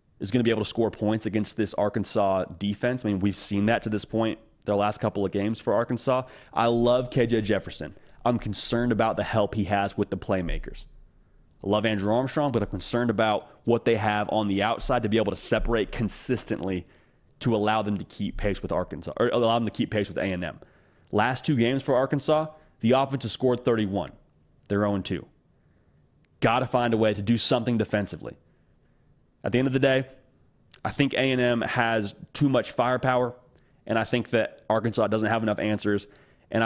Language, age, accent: English, 30-49, American